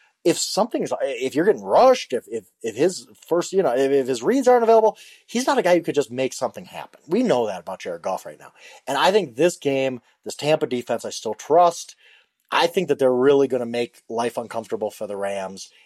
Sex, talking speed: male, 235 wpm